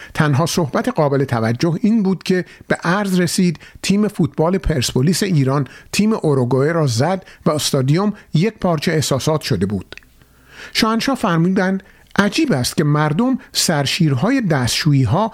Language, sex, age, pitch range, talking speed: Persian, male, 50-69, 140-195 Hz, 135 wpm